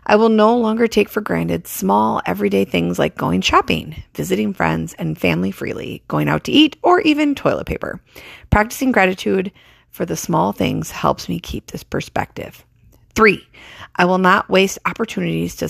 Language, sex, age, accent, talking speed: English, female, 40-59, American, 170 wpm